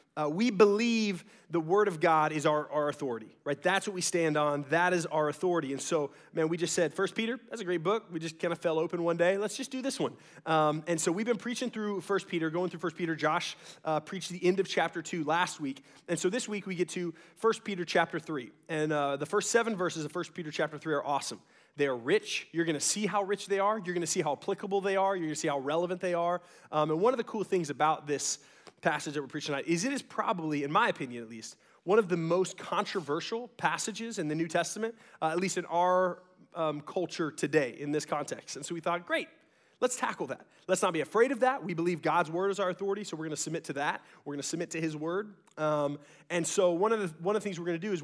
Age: 30-49